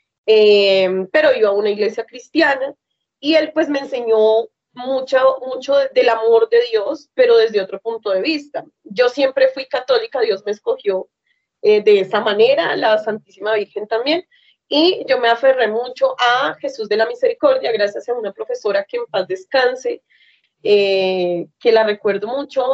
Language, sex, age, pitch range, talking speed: Spanish, female, 30-49, 215-340 Hz, 165 wpm